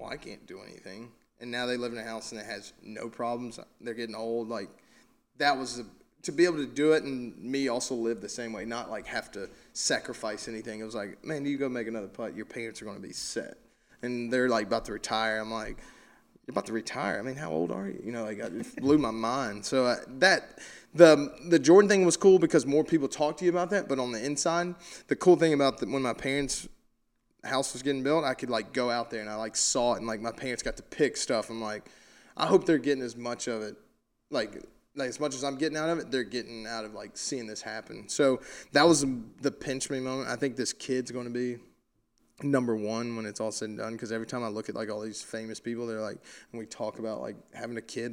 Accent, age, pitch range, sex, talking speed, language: American, 20-39, 110-140 Hz, male, 255 wpm, English